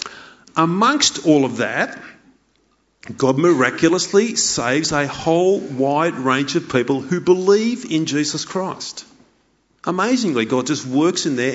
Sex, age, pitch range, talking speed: male, 40-59, 135-190 Hz, 125 wpm